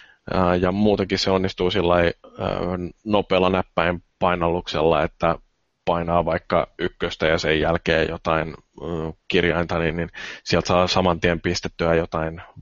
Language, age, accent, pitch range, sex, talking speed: Finnish, 20-39, native, 85-100 Hz, male, 115 wpm